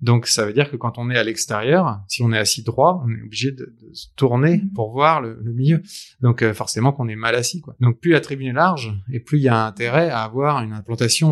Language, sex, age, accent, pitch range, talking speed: French, male, 20-39, French, 110-135 Hz, 270 wpm